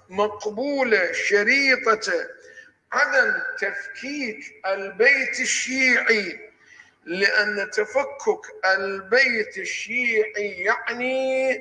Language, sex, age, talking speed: Arabic, male, 50-69, 55 wpm